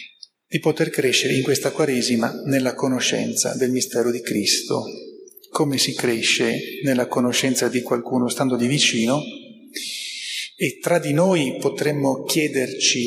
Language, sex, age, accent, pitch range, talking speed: Italian, male, 30-49, native, 125-185 Hz, 130 wpm